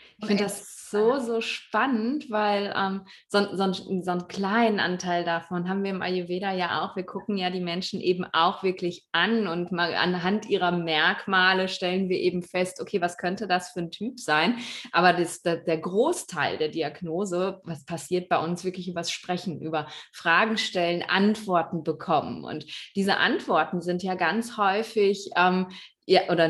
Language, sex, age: German, female, 20-39